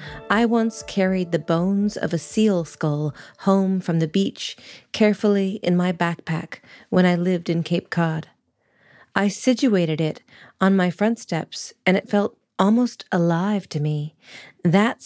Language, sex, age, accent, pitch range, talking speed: English, female, 40-59, American, 165-205 Hz, 150 wpm